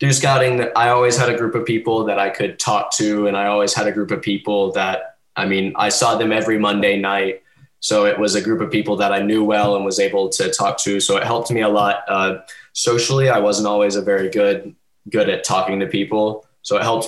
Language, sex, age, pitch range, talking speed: English, male, 10-29, 105-120 Hz, 245 wpm